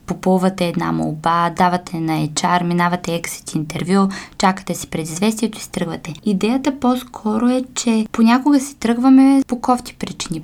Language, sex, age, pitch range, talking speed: Bulgarian, female, 20-39, 185-225 Hz, 140 wpm